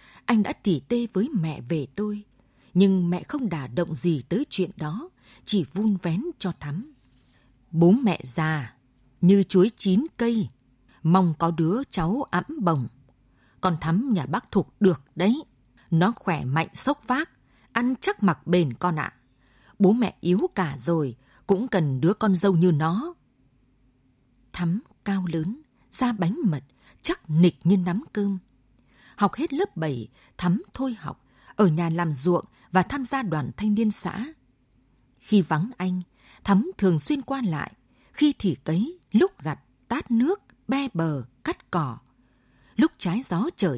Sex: female